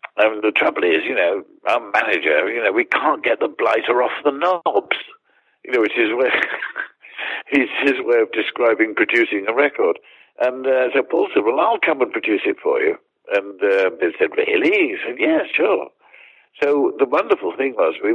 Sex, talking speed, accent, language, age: male, 190 wpm, British, English, 60-79